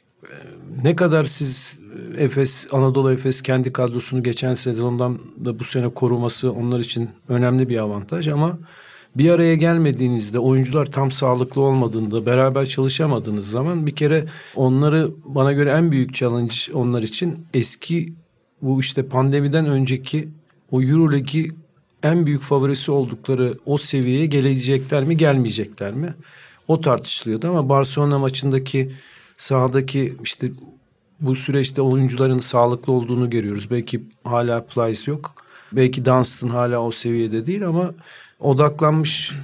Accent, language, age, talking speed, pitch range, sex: native, Turkish, 50-69, 125 wpm, 125-150 Hz, male